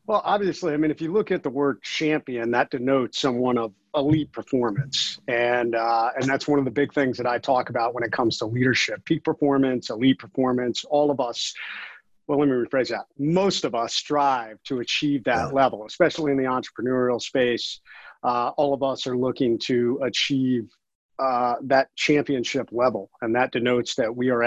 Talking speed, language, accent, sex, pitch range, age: 190 wpm, English, American, male, 120-145 Hz, 40-59